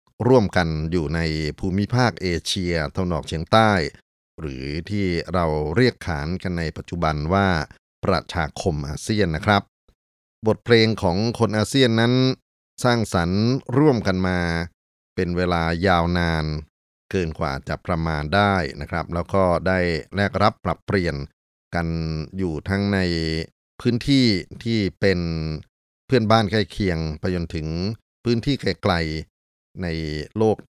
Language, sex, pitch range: Thai, male, 80-100 Hz